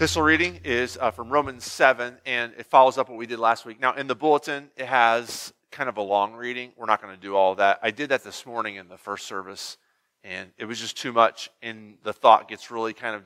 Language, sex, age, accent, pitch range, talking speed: English, male, 30-49, American, 115-150 Hz, 250 wpm